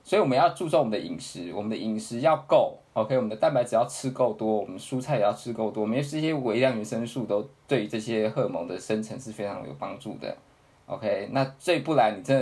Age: 20-39